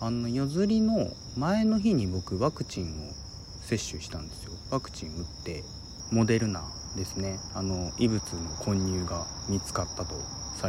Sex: male